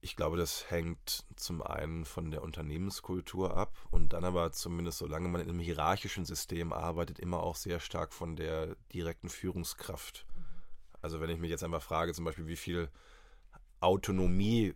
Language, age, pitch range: English, 30-49, 85-100 Hz